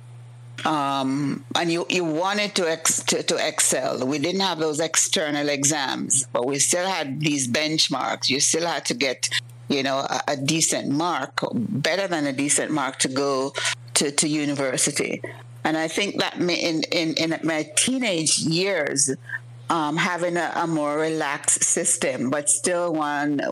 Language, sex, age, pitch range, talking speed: English, female, 60-79, 135-170 Hz, 160 wpm